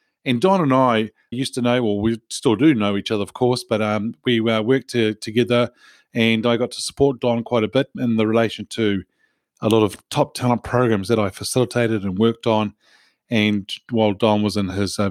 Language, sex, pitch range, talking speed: English, male, 110-130 Hz, 220 wpm